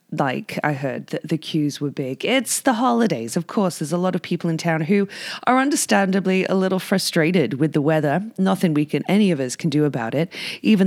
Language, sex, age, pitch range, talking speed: English, female, 30-49, 145-190 Hz, 220 wpm